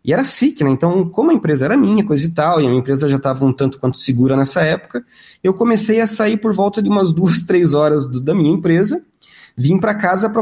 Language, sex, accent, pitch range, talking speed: Portuguese, male, Brazilian, 120-190 Hz, 255 wpm